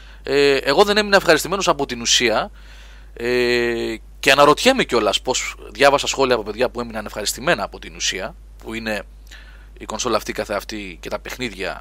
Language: Greek